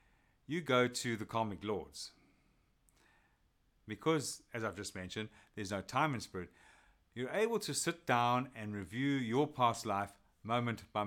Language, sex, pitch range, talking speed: English, male, 95-130 Hz, 150 wpm